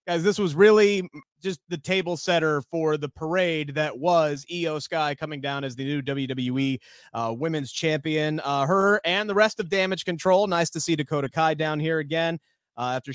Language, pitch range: English, 145-185 Hz